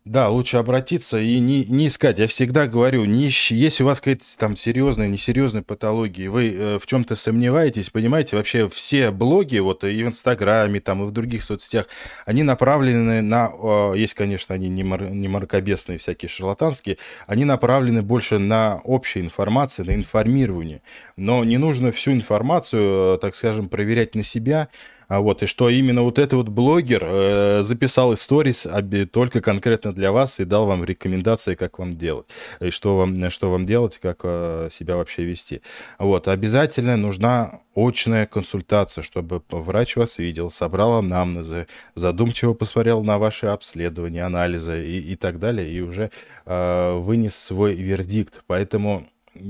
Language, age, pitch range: Russian, 20-39, 90-120 Hz